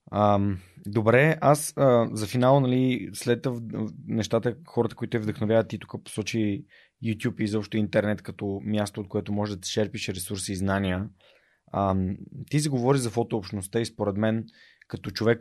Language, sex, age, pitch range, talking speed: Bulgarian, male, 20-39, 100-125 Hz, 165 wpm